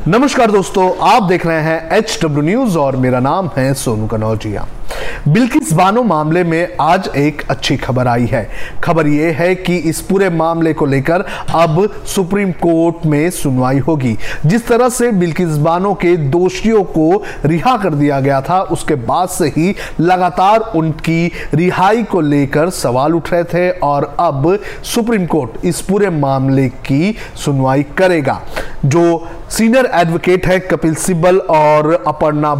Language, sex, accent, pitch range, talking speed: Hindi, male, native, 150-190 Hz, 150 wpm